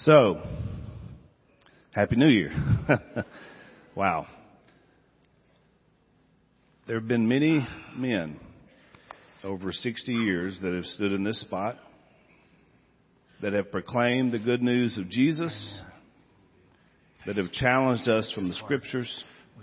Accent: American